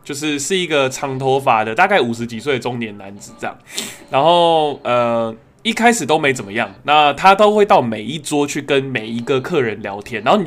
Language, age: Chinese, 20-39